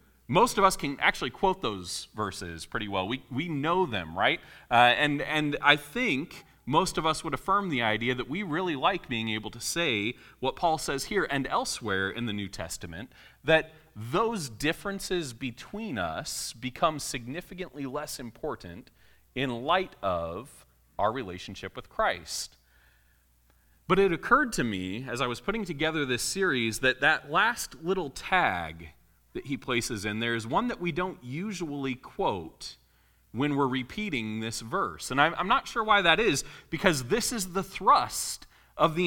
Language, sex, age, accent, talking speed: English, male, 30-49, American, 165 wpm